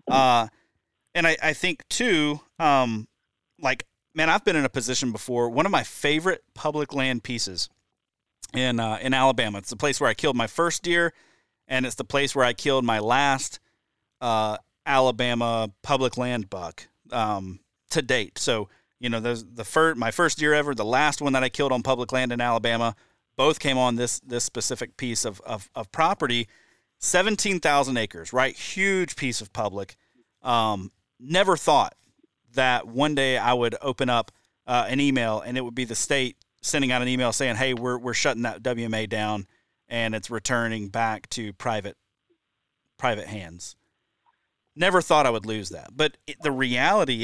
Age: 30-49